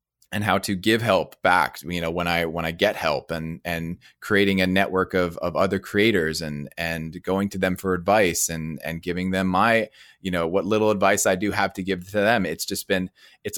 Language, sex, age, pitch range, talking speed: English, male, 20-39, 85-100 Hz, 225 wpm